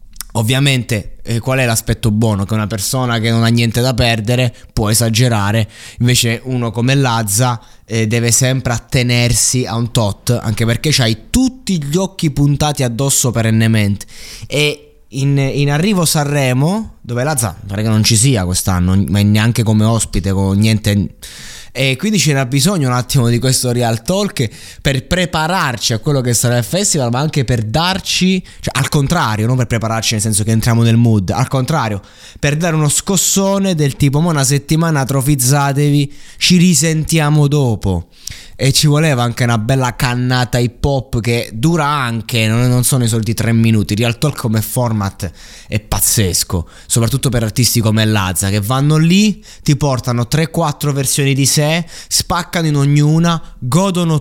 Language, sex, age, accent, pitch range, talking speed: Italian, male, 20-39, native, 110-150 Hz, 165 wpm